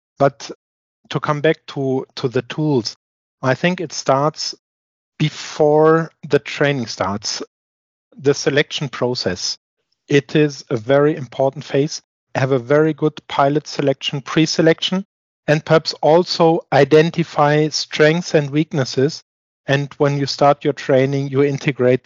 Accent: German